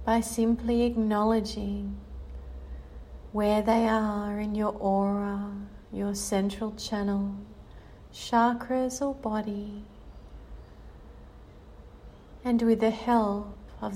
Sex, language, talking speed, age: female, English, 85 wpm, 30-49